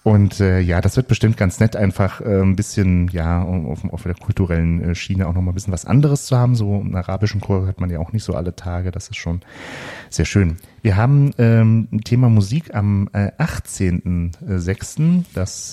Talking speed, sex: 210 wpm, male